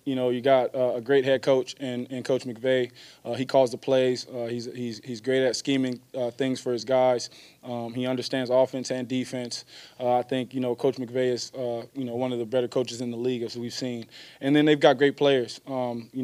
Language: English